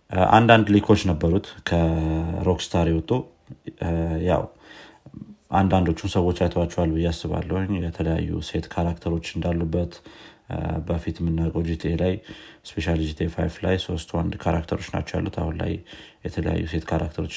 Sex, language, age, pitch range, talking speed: male, Amharic, 30-49, 85-95 Hz, 105 wpm